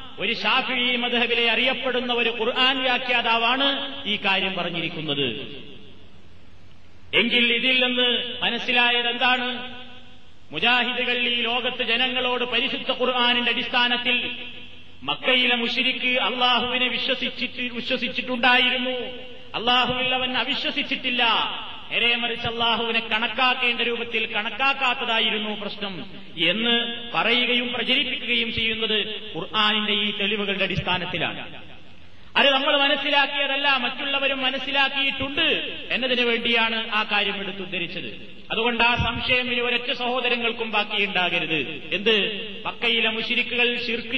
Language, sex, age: Malayalam, male, 30-49